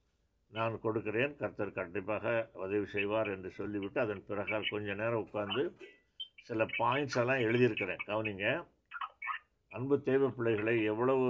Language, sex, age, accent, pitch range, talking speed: Tamil, male, 60-79, native, 105-125 Hz, 115 wpm